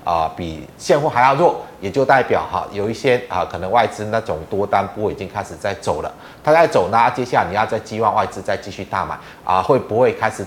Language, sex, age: Chinese, male, 30-49